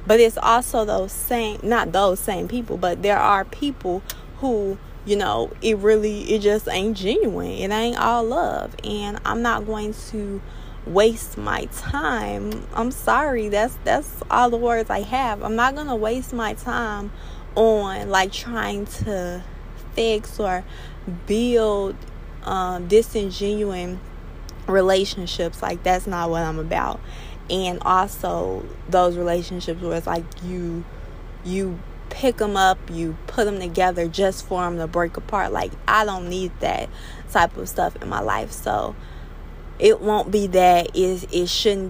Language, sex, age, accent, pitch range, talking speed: English, female, 20-39, American, 170-215 Hz, 150 wpm